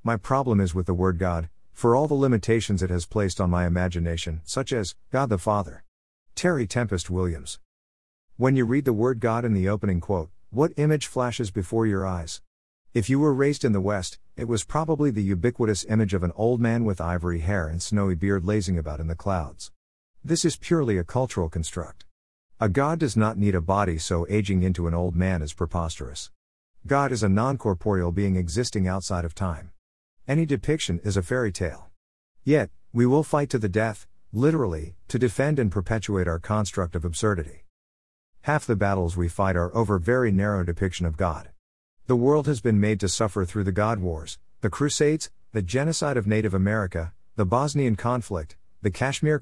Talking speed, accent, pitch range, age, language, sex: 190 wpm, American, 90-120 Hz, 50-69, English, male